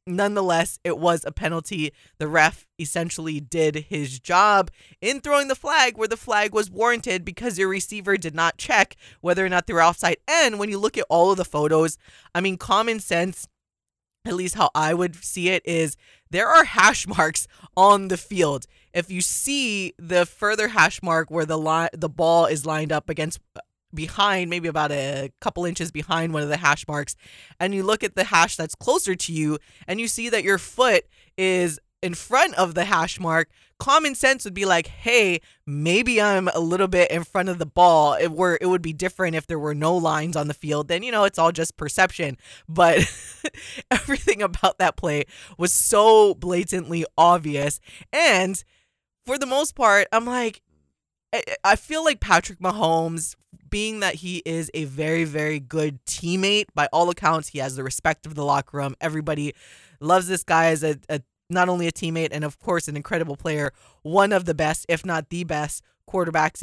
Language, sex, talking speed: English, female, 195 wpm